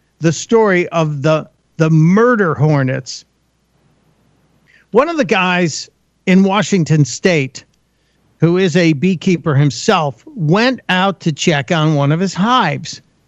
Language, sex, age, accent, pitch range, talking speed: English, male, 50-69, American, 155-215 Hz, 125 wpm